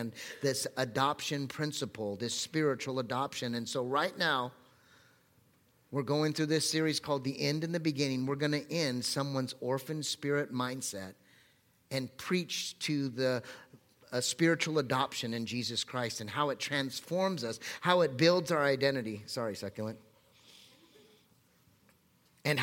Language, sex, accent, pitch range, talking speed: English, male, American, 125-160 Hz, 140 wpm